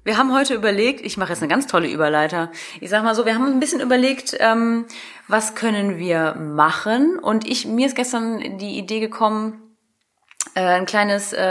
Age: 30-49